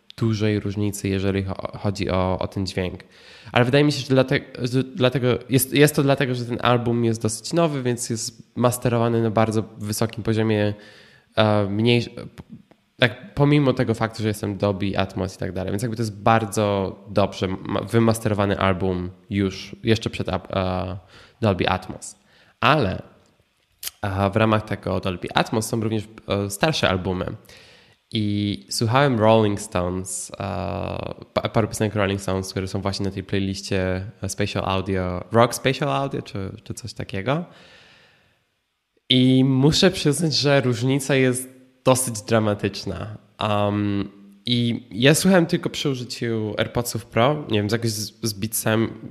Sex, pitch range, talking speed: male, 100-120 Hz, 145 wpm